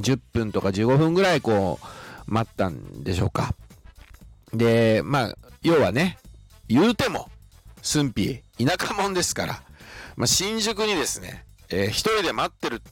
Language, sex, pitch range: Japanese, male, 100-150 Hz